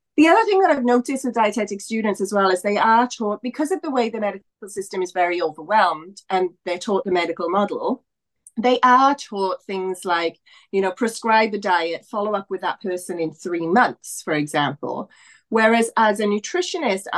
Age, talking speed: 30-49, 190 wpm